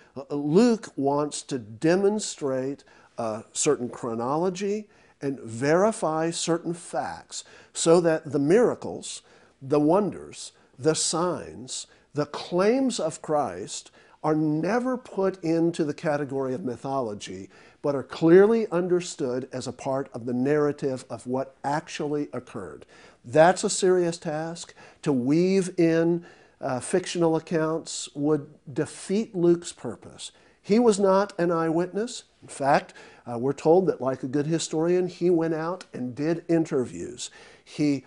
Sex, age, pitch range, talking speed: male, 50-69, 140-175 Hz, 130 wpm